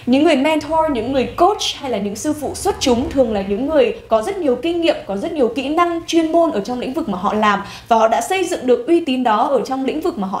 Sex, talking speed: female, 295 wpm